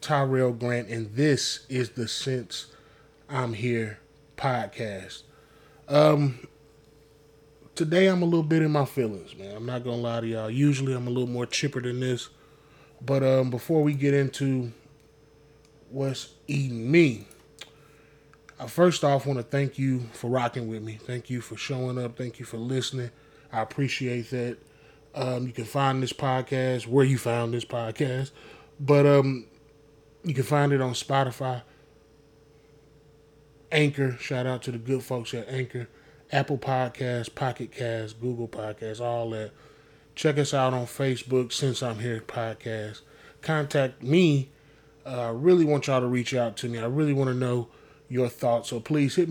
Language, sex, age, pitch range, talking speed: English, male, 20-39, 120-150 Hz, 165 wpm